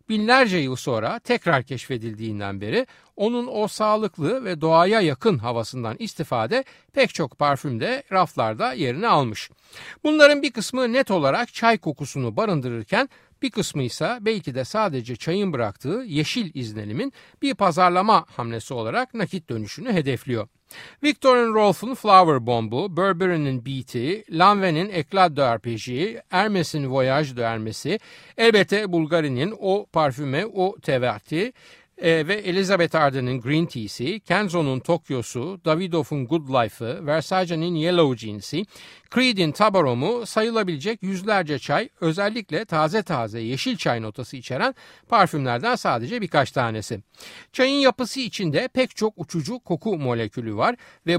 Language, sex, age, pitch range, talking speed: Turkish, male, 60-79, 130-215 Hz, 120 wpm